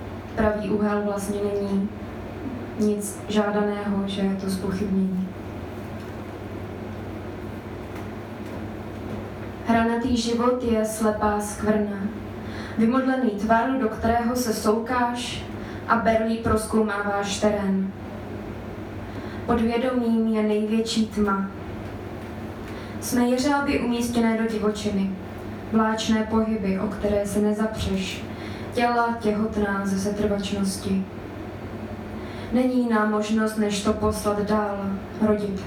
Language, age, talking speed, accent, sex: Czech, 20-39, 90 wpm, native, female